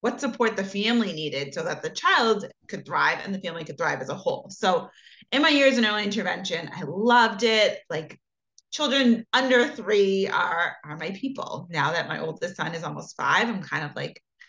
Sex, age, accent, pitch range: female, 20-39, American, 175-235 Hz